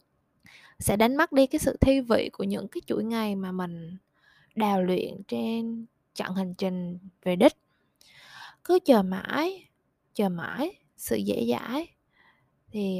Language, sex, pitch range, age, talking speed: Vietnamese, female, 190-250 Hz, 20-39, 150 wpm